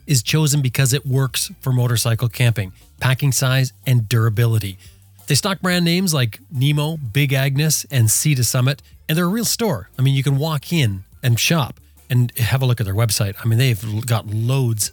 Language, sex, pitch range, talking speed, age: English, male, 115-140 Hz, 195 wpm, 30-49